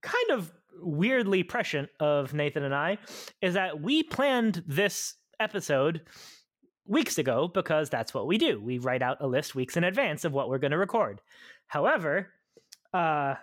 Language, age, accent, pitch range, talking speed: English, 30-49, American, 150-205 Hz, 165 wpm